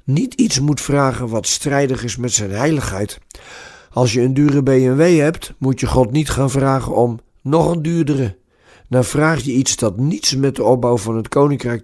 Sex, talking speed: male, 195 wpm